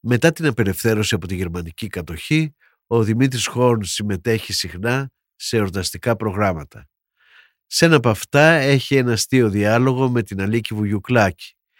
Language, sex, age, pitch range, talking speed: Greek, male, 50-69, 100-135 Hz, 135 wpm